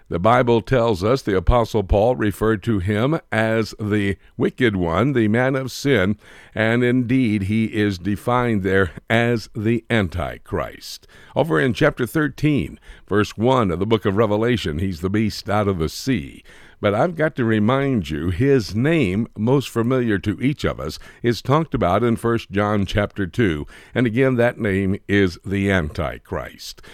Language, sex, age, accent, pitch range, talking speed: English, male, 60-79, American, 100-130 Hz, 165 wpm